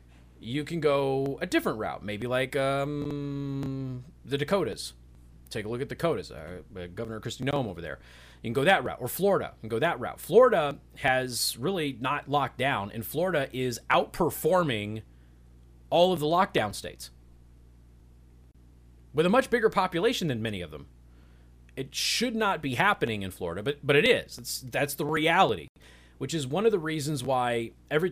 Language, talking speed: English, 175 wpm